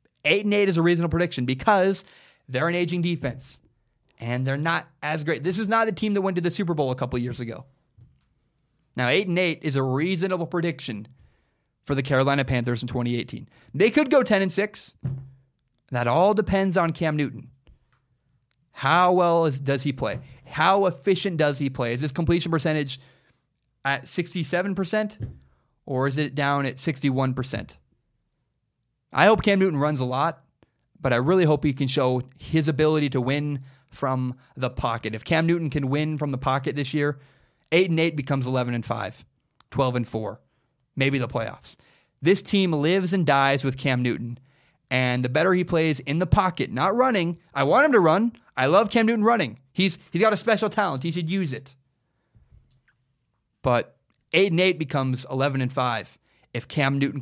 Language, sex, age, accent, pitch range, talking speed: English, male, 20-39, American, 130-170 Hz, 185 wpm